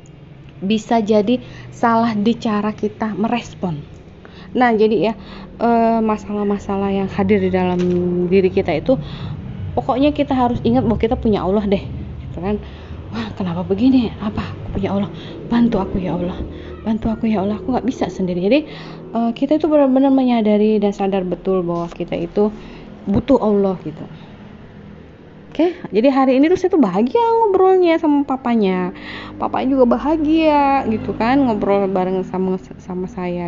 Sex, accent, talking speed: female, native, 145 wpm